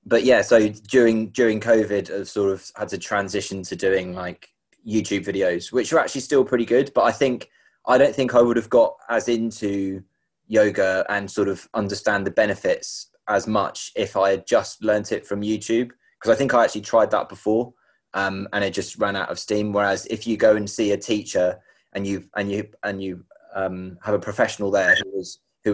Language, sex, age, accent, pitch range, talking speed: English, male, 20-39, British, 95-110 Hz, 210 wpm